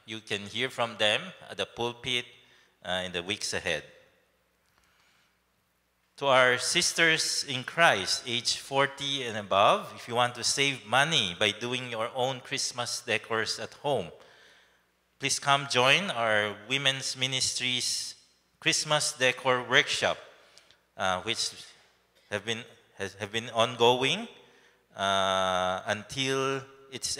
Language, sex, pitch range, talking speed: English, male, 100-130 Hz, 125 wpm